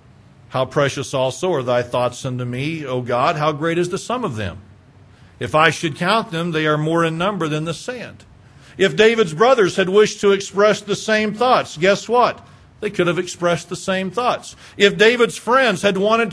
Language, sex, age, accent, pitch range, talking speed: English, male, 50-69, American, 165-225 Hz, 200 wpm